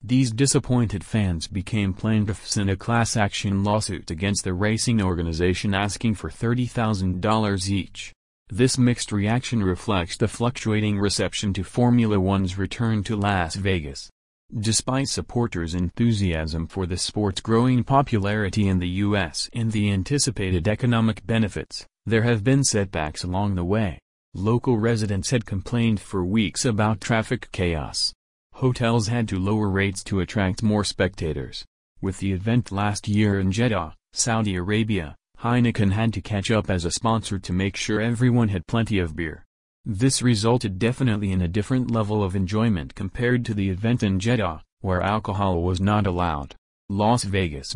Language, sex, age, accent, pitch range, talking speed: English, male, 30-49, American, 95-115 Hz, 150 wpm